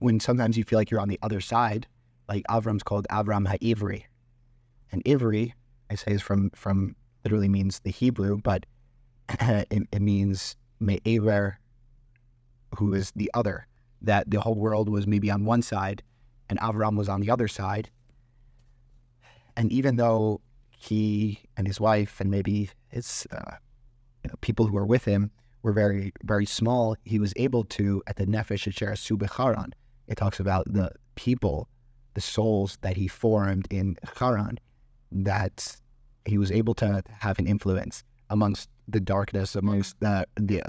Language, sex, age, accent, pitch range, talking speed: English, male, 30-49, American, 100-120 Hz, 160 wpm